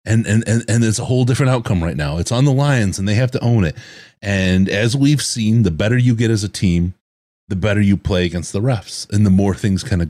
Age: 30-49